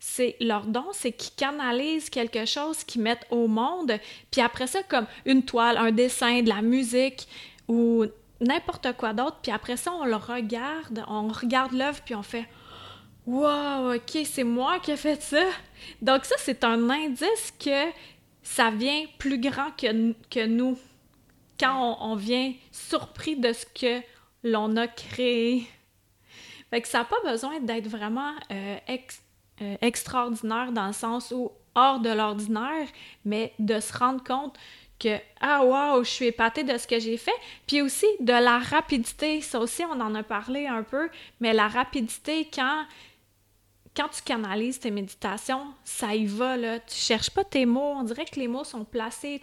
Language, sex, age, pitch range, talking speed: French, female, 30-49, 225-275 Hz, 180 wpm